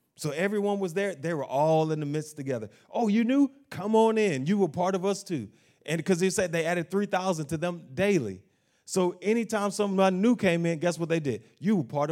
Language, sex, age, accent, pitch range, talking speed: English, male, 30-49, American, 120-175 Hz, 235 wpm